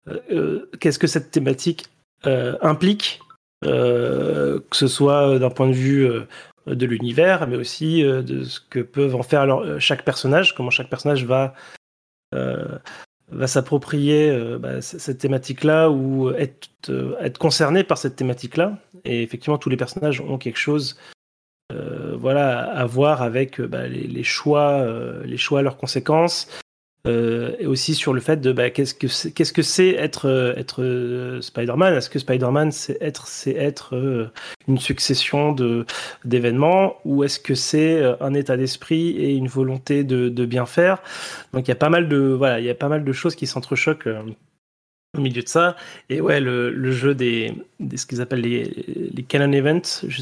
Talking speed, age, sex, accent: 165 wpm, 30-49, male, French